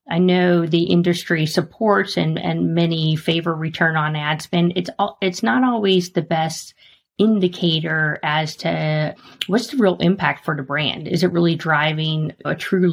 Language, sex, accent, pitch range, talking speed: English, female, American, 155-180 Hz, 165 wpm